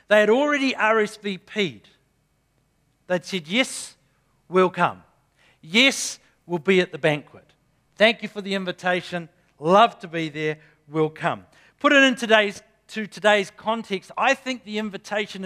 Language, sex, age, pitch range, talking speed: English, male, 50-69, 175-220 Hz, 135 wpm